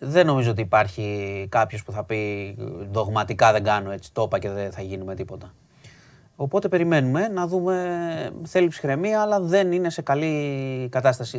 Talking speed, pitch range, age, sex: 165 wpm, 115-160 Hz, 30-49, male